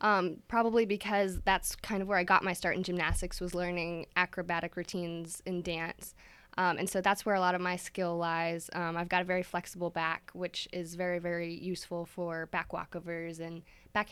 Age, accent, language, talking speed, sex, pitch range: 10-29, American, English, 200 wpm, female, 170-195 Hz